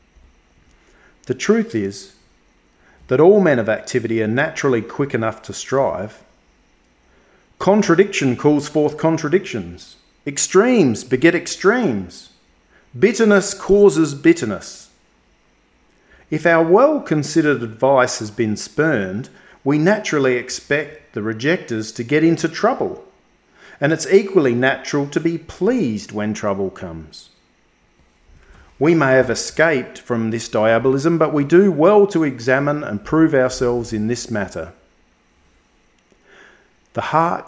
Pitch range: 110-155 Hz